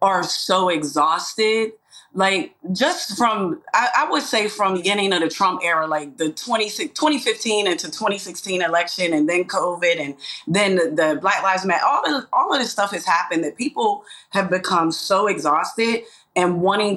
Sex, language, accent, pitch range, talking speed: female, English, American, 185-275 Hz, 180 wpm